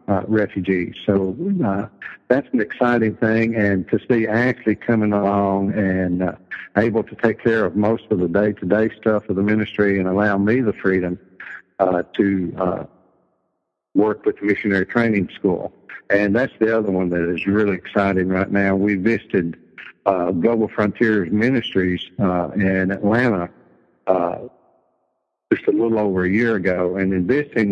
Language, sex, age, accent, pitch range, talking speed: English, male, 60-79, American, 95-110 Hz, 160 wpm